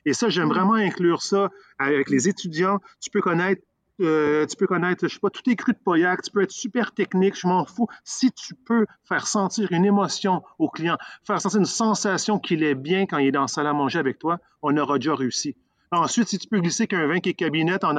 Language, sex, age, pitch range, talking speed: French, male, 40-59, 150-195 Hz, 245 wpm